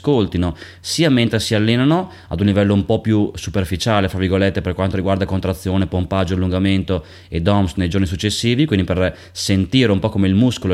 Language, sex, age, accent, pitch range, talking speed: Italian, male, 20-39, native, 90-105 Hz, 185 wpm